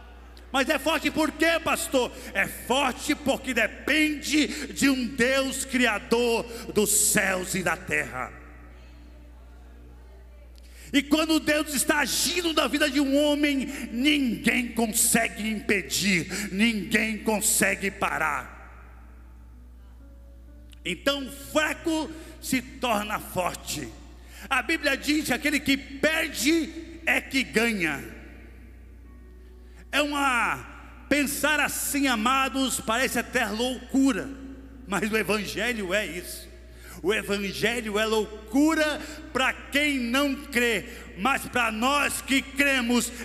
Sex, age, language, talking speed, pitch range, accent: male, 50-69, Portuguese, 105 wpm, 210-285 Hz, Brazilian